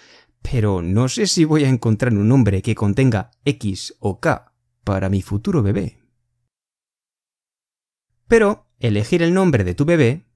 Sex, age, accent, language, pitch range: male, 30-49, Spanish, Chinese, 110-160 Hz